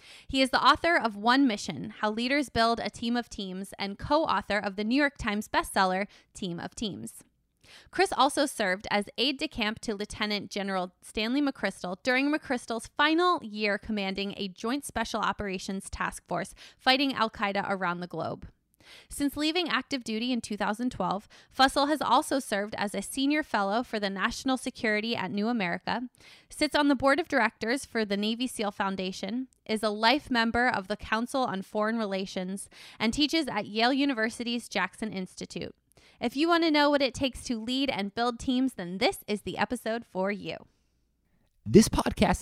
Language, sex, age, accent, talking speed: English, female, 20-39, American, 175 wpm